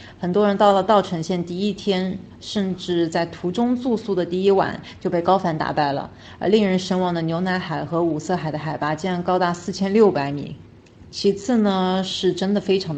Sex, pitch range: female, 160-195 Hz